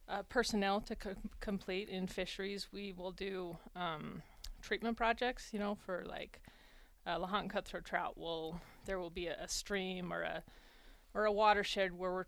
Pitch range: 175-200 Hz